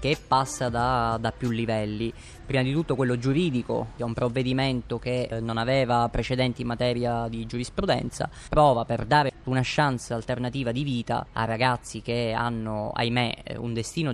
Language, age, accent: Italian, 20-39, native